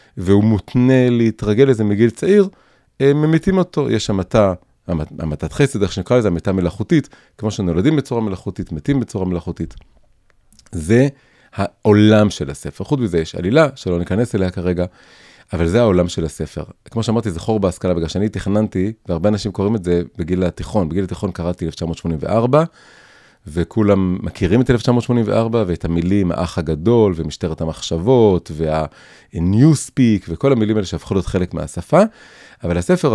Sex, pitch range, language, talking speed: male, 85-120 Hz, Hebrew, 145 wpm